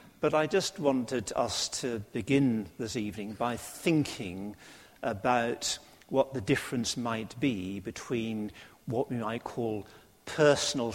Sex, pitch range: male, 115-145 Hz